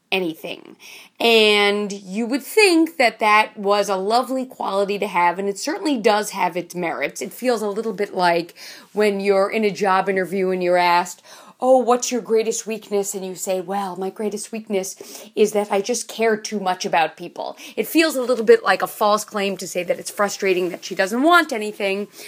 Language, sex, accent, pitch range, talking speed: English, female, American, 195-245 Hz, 200 wpm